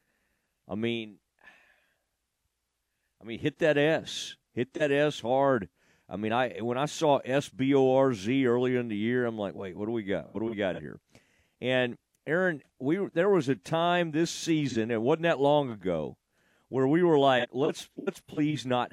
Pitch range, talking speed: 110-150 Hz, 190 wpm